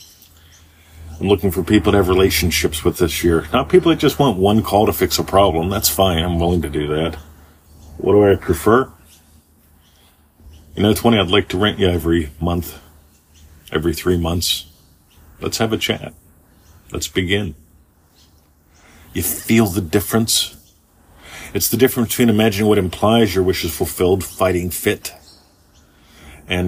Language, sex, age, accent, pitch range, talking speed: English, male, 40-59, American, 80-115 Hz, 155 wpm